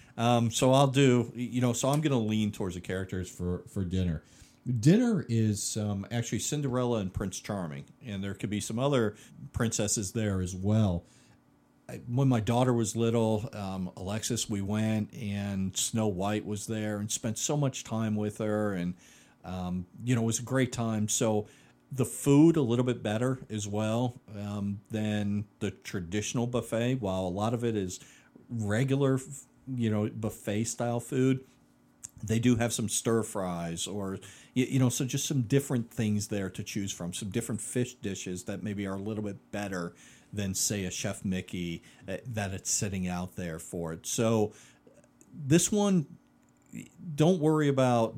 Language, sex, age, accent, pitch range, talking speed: English, male, 50-69, American, 95-120 Hz, 175 wpm